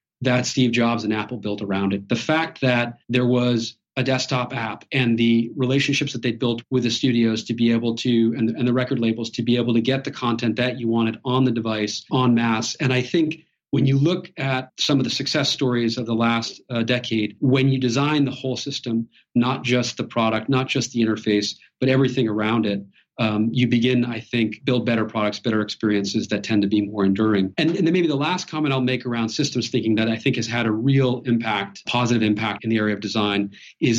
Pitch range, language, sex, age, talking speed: 115-135 Hz, English, male, 40-59, 225 wpm